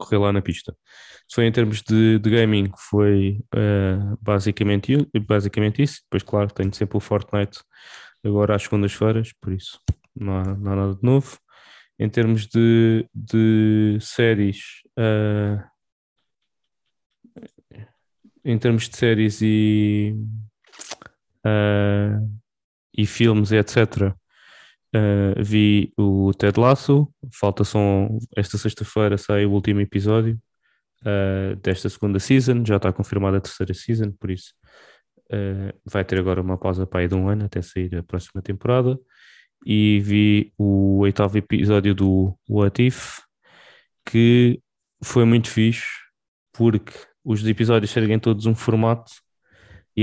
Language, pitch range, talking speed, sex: English, 100-110 Hz, 135 wpm, male